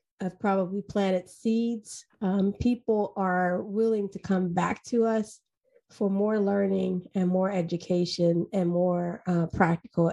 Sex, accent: female, American